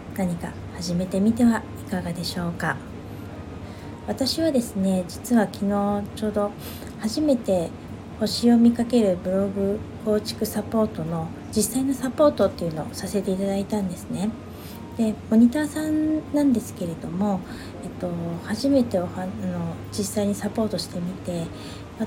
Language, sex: Japanese, female